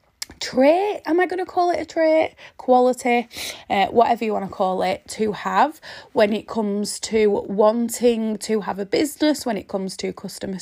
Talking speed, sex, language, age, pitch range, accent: 185 wpm, female, English, 20-39, 195-255 Hz, British